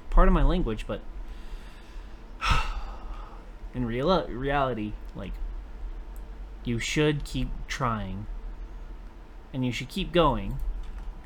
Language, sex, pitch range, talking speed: English, male, 110-135 Hz, 95 wpm